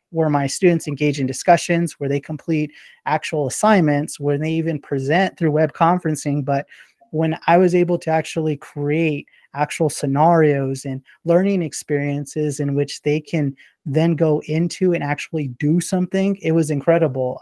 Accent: American